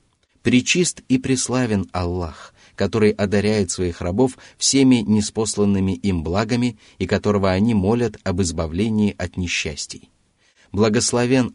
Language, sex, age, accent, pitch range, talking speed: Russian, male, 30-49, native, 90-115 Hz, 110 wpm